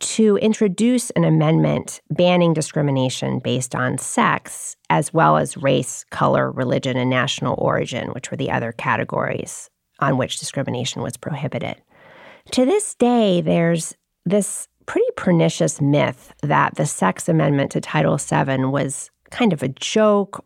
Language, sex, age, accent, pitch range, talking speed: English, female, 40-59, American, 135-200 Hz, 140 wpm